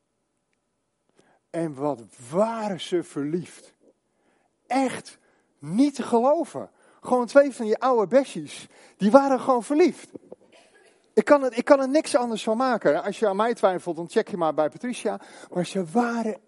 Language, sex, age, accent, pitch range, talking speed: Dutch, male, 40-59, Dutch, 170-235 Hz, 145 wpm